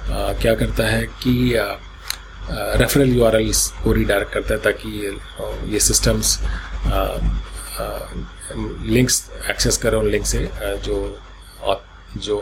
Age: 30-49